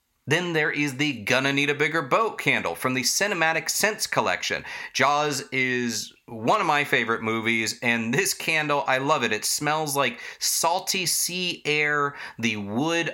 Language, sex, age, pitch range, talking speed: English, male, 30-49, 130-165 Hz, 165 wpm